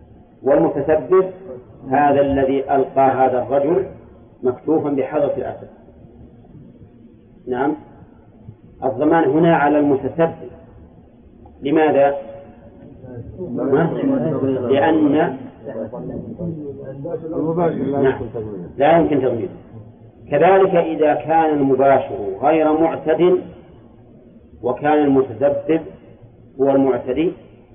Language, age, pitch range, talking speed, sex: Arabic, 40-59, 130-155 Hz, 65 wpm, male